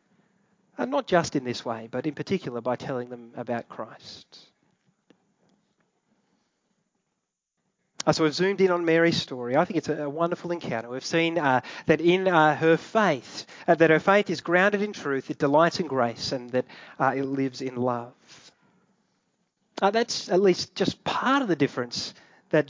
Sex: male